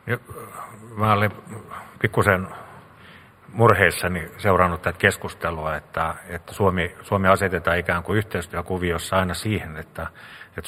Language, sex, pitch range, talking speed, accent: Finnish, male, 85-100 Hz, 105 wpm, native